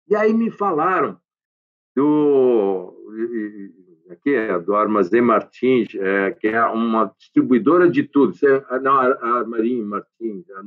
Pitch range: 120-185 Hz